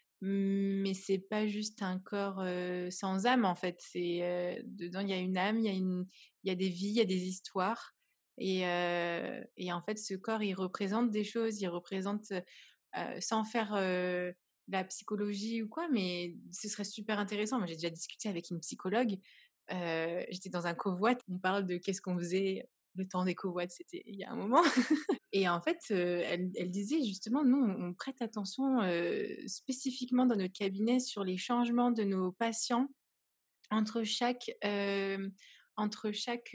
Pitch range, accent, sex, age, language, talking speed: 185-235 Hz, French, female, 20-39, French, 185 wpm